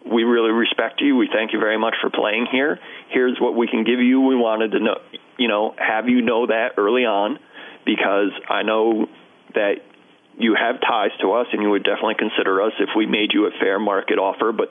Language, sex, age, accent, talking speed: English, male, 40-59, American, 220 wpm